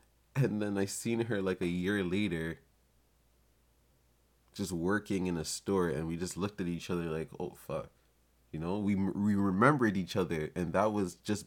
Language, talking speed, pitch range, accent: English, 185 wpm, 75-95 Hz, American